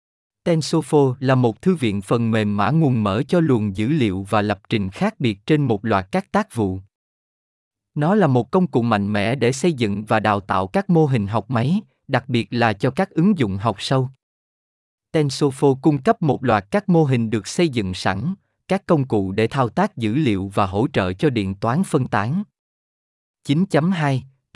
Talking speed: 200 wpm